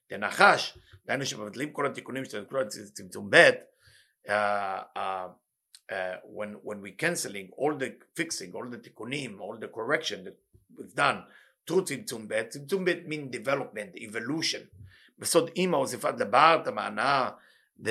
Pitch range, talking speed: 115-180 Hz, 95 wpm